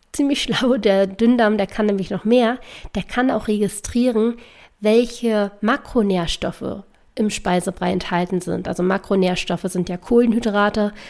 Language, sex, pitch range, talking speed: German, female, 190-225 Hz, 130 wpm